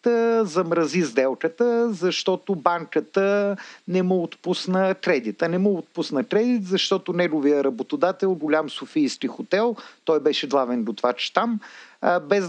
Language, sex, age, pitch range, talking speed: Bulgarian, male, 50-69, 150-210 Hz, 120 wpm